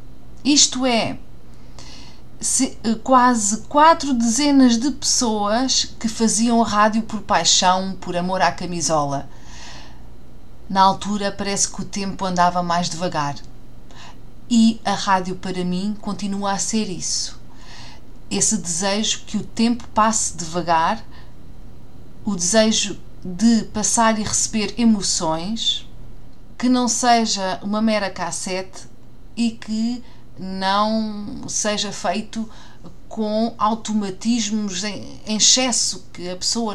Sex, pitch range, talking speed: female, 175-215 Hz, 110 wpm